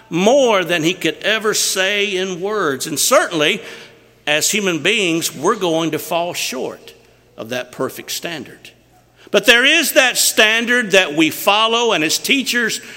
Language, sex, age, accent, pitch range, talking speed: English, male, 50-69, American, 160-230 Hz, 155 wpm